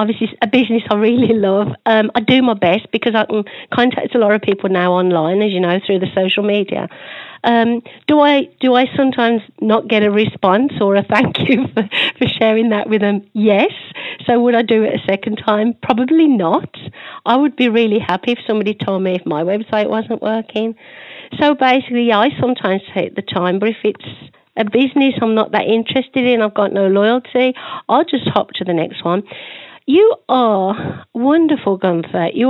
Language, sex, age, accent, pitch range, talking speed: English, female, 50-69, British, 200-240 Hz, 195 wpm